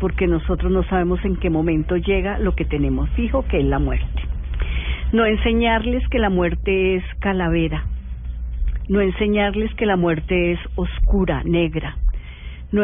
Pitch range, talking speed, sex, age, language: 140-195 Hz, 150 wpm, female, 50-69, Spanish